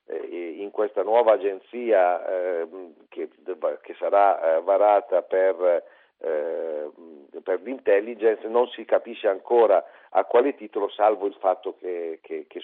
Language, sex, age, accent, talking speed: Italian, male, 50-69, native, 95 wpm